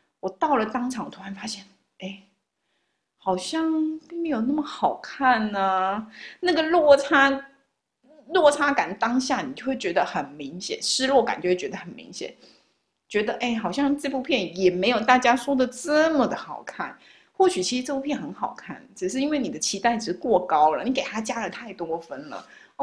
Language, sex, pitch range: Chinese, female, 205-285 Hz